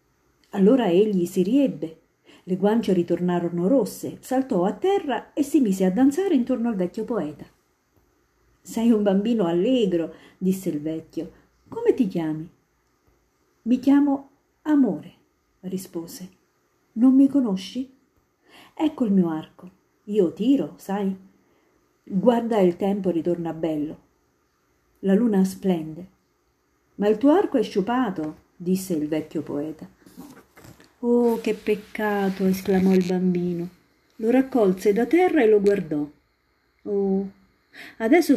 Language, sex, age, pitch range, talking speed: Italian, female, 50-69, 170-245 Hz, 120 wpm